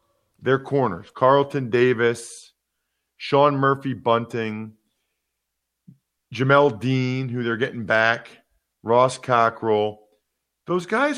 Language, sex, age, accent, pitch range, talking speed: English, male, 40-59, American, 115-155 Hz, 90 wpm